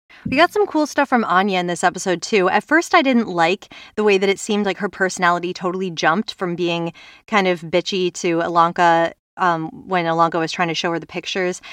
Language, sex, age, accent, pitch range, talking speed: English, female, 20-39, American, 170-205 Hz, 220 wpm